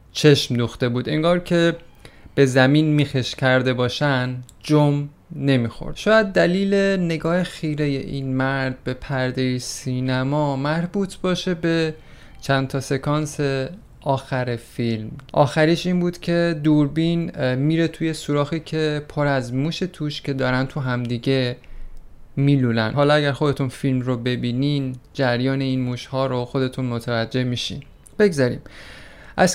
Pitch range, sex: 130-165 Hz, male